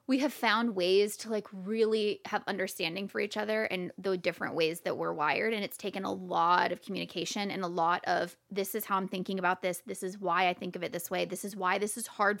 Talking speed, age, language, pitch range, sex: 250 wpm, 20-39, English, 185-230 Hz, female